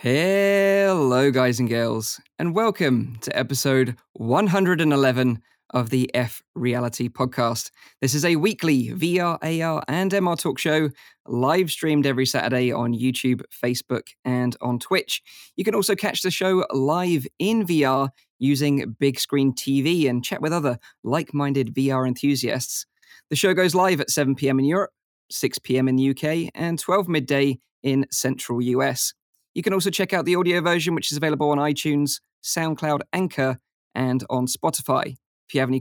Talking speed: 155 wpm